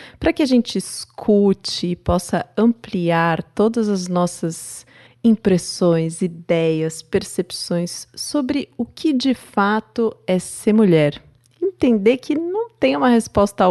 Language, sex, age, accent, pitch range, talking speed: Portuguese, female, 30-49, Brazilian, 155-215 Hz, 125 wpm